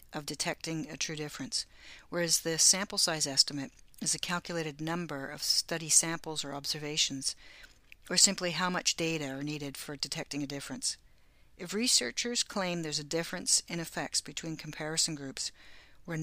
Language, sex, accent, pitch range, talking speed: English, female, American, 145-175 Hz, 155 wpm